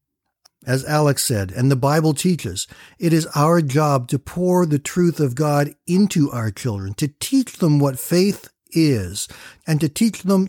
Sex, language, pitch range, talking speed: male, English, 125-160 Hz, 170 wpm